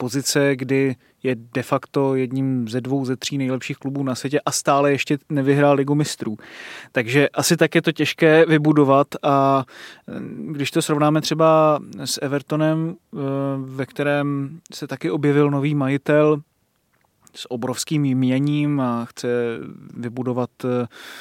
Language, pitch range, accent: Czech, 125-140 Hz, native